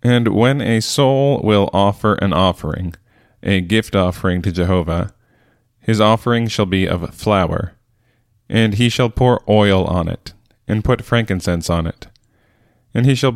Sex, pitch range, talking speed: male, 95-115 Hz, 155 wpm